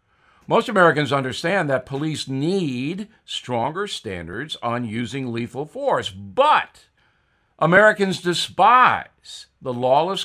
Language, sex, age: English, male, 60-79